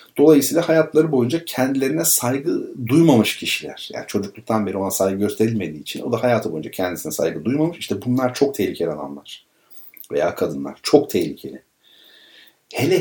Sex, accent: male, native